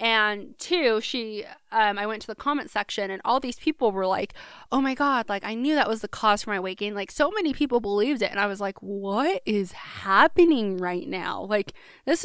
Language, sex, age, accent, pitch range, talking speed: English, female, 20-39, American, 205-270 Hz, 230 wpm